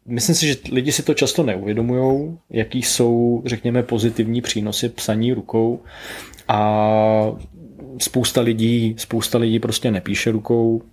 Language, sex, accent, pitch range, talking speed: Czech, male, native, 110-120 Hz, 125 wpm